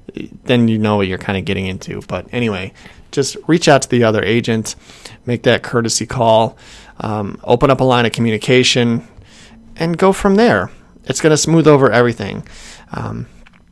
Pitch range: 110-135 Hz